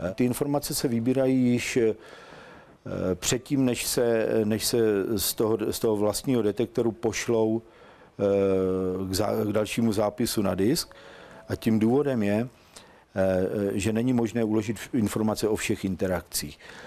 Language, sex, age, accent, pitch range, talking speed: Czech, male, 50-69, native, 105-115 Hz, 130 wpm